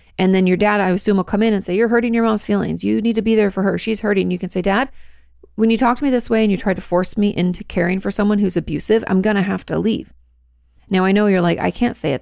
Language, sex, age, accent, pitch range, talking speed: English, female, 30-49, American, 160-210 Hz, 310 wpm